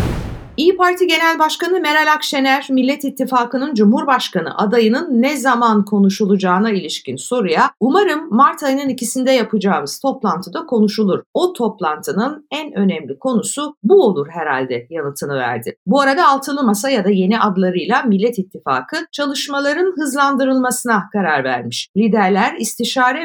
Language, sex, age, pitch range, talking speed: Turkish, female, 50-69, 195-260 Hz, 125 wpm